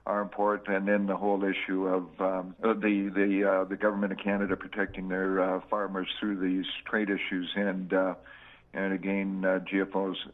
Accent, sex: American, male